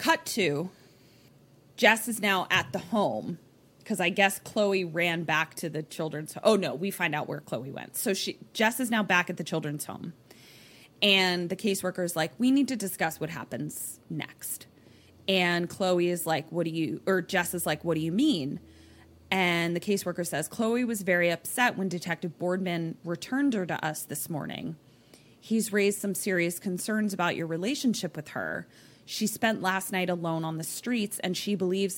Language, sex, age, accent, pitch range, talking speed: English, female, 20-39, American, 160-205 Hz, 190 wpm